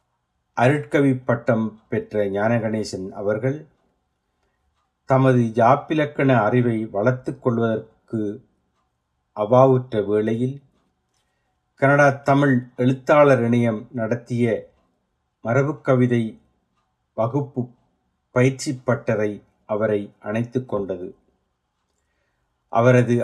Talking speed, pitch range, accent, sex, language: 65 wpm, 105-130 Hz, native, male, Tamil